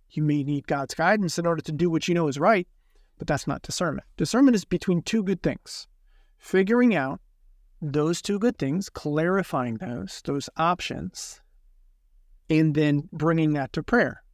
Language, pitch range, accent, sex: English, 145-190 Hz, American, male